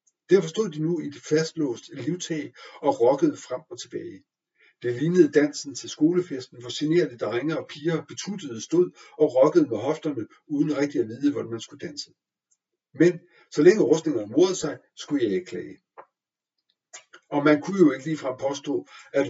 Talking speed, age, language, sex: 170 wpm, 60-79, Danish, male